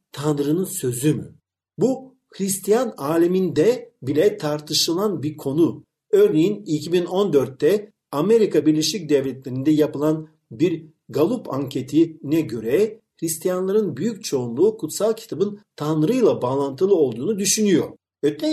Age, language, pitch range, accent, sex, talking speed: 50-69, Turkish, 150-210 Hz, native, male, 95 wpm